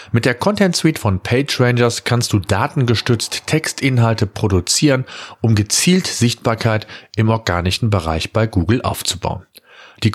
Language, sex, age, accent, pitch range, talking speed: German, male, 40-59, German, 105-145 Hz, 125 wpm